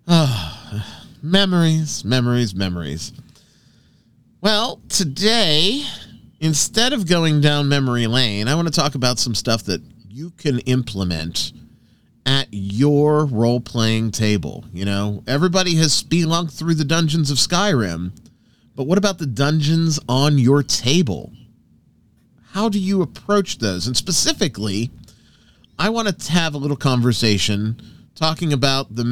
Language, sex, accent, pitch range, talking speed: English, male, American, 110-165 Hz, 130 wpm